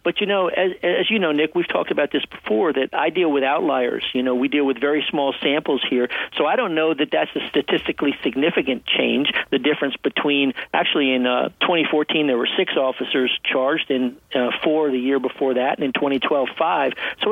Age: 50-69